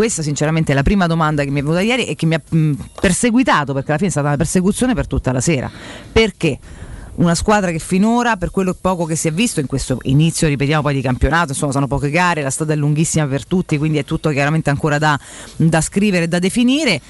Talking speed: 240 wpm